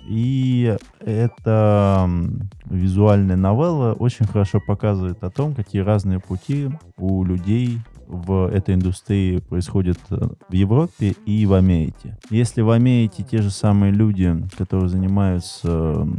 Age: 20-39